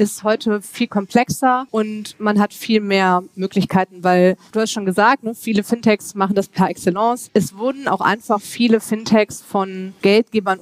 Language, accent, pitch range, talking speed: German, German, 180-215 Hz, 165 wpm